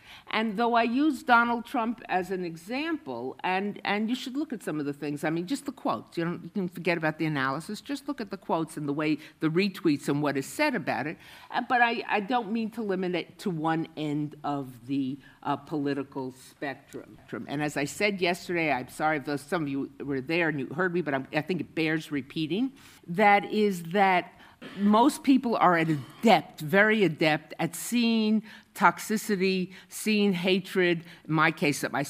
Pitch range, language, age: 145-200 Hz, English, 50-69